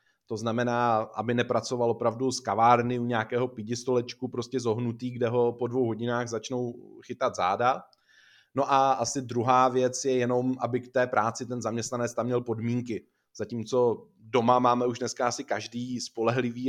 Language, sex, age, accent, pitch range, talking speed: Czech, male, 20-39, native, 120-140 Hz, 160 wpm